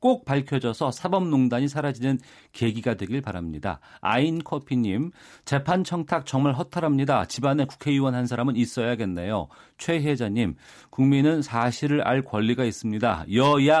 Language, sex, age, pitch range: Korean, male, 40-59, 105-145 Hz